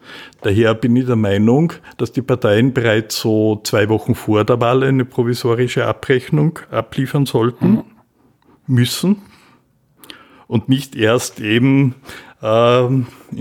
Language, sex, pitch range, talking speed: German, male, 110-135 Hz, 115 wpm